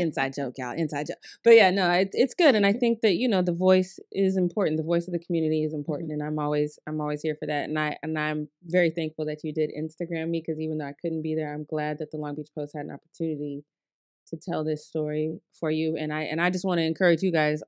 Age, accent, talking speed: 30-49, American, 270 wpm